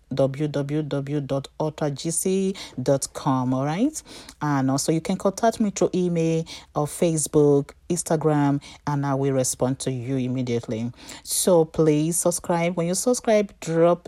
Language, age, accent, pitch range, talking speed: English, 40-59, Nigerian, 140-180 Hz, 120 wpm